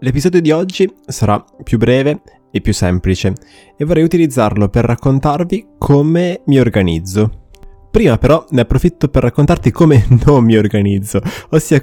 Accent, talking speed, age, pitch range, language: native, 140 wpm, 20-39, 100-125 Hz, Italian